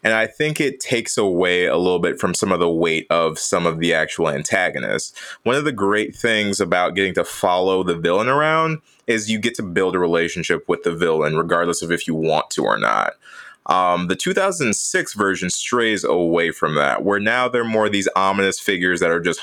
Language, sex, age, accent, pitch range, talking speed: English, male, 20-39, American, 90-120 Hz, 210 wpm